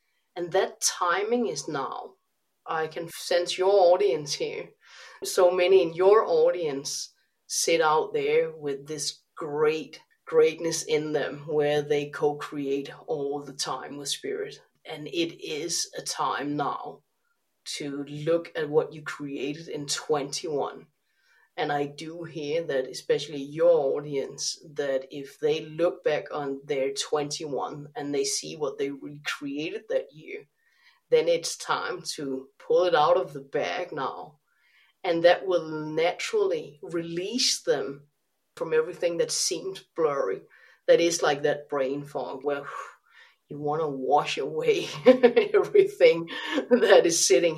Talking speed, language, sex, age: 140 wpm, English, female, 30-49